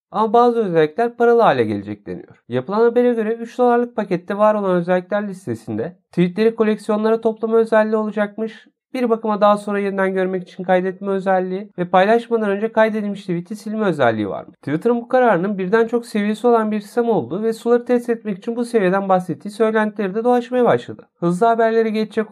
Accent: native